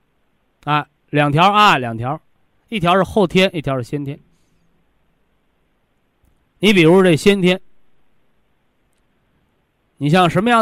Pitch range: 140-195 Hz